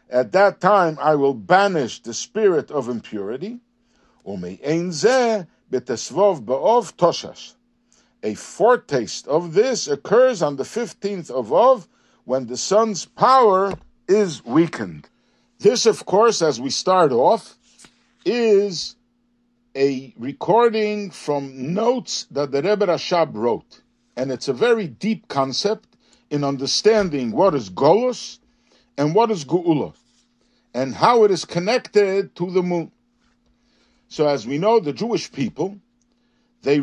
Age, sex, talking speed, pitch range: 60-79, male, 120 wpm, 150-240 Hz